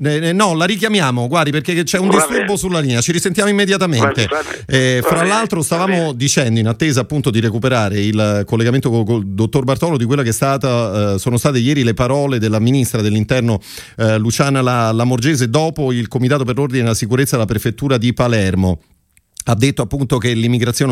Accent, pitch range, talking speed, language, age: native, 115-145 Hz, 170 wpm, Italian, 40-59